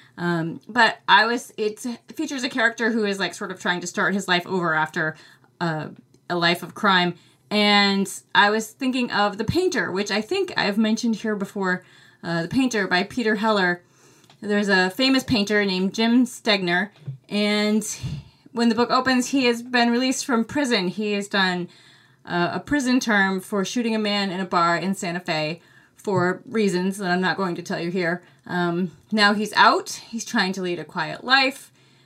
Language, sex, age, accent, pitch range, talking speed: English, female, 20-39, American, 175-220 Hz, 190 wpm